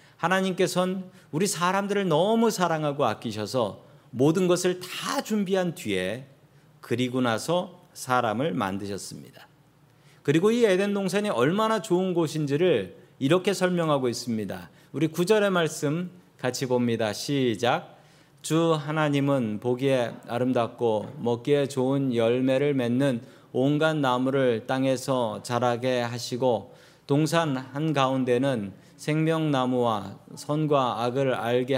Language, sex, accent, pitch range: Korean, male, native, 125-175 Hz